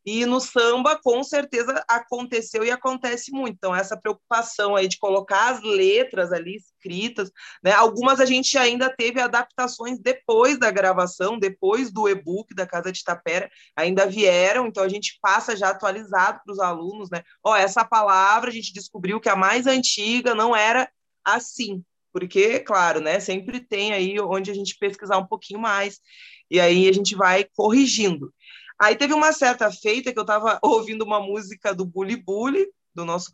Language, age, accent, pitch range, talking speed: Portuguese, 20-39, Brazilian, 195-260 Hz, 175 wpm